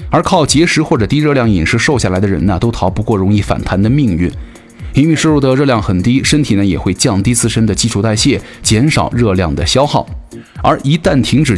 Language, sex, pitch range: Chinese, male, 100-135 Hz